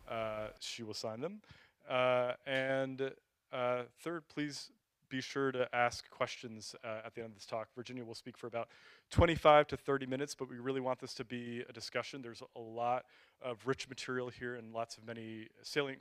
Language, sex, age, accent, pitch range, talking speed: English, male, 30-49, American, 120-135 Hz, 195 wpm